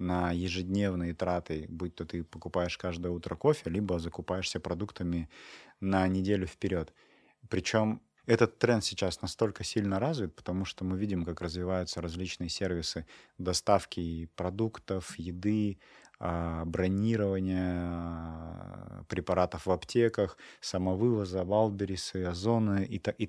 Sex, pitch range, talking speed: male, 90-110 Hz, 110 wpm